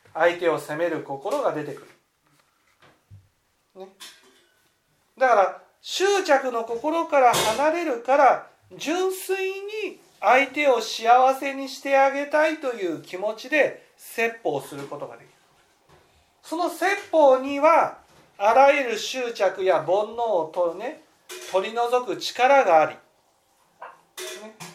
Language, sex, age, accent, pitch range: Japanese, male, 40-59, native, 185-285 Hz